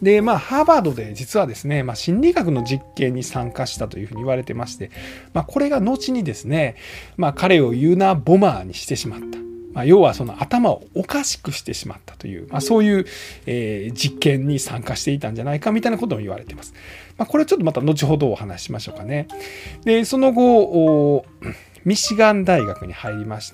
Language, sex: Japanese, male